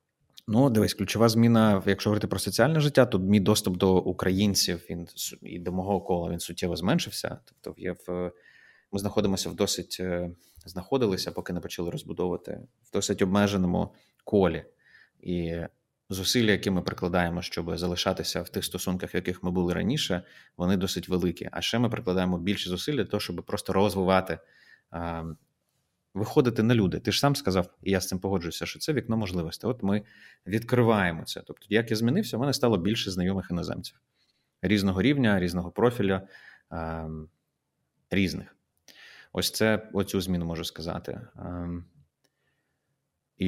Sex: male